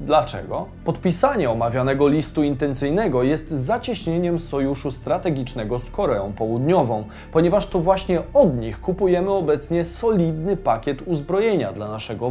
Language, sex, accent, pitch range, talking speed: Polish, male, native, 125-180 Hz, 115 wpm